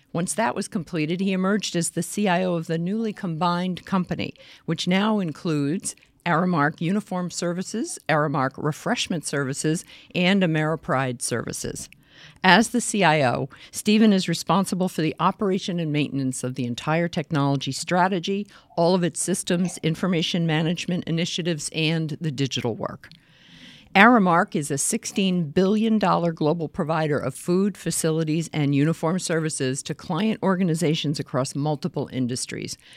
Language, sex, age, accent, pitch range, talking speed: English, female, 50-69, American, 145-185 Hz, 130 wpm